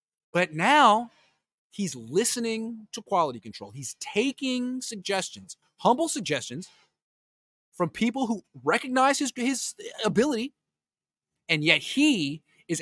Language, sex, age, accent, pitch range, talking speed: English, male, 30-49, American, 145-235 Hz, 110 wpm